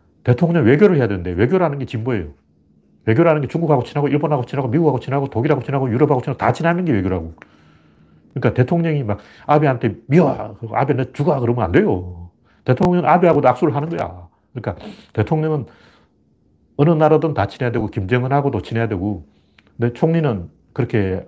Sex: male